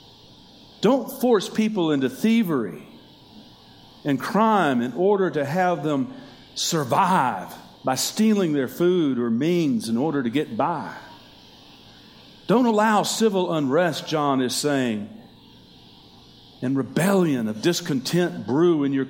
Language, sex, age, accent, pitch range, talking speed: English, male, 50-69, American, 125-180 Hz, 120 wpm